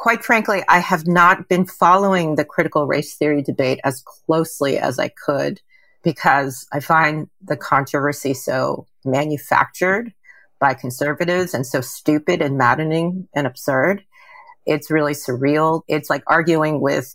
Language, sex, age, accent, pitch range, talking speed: English, female, 40-59, American, 150-195 Hz, 140 wpm